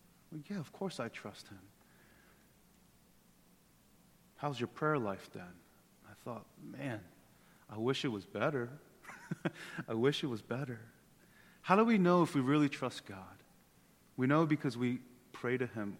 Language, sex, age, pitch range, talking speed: English, male, 30-49, 115-160 Hz, 155 wpm